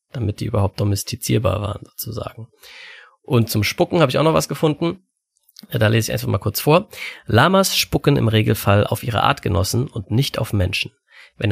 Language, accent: German, German